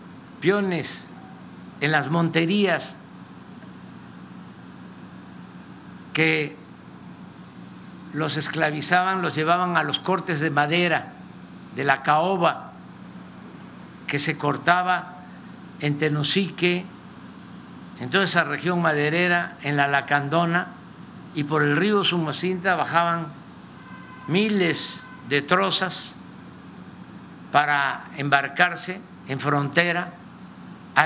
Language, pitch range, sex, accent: Spanish, 150-180 Hz, male, Mexican